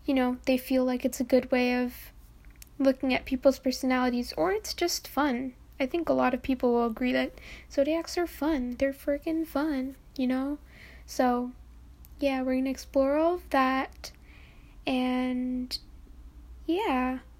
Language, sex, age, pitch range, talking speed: English, female, 10-29, 250-285 Hz, 155 wpm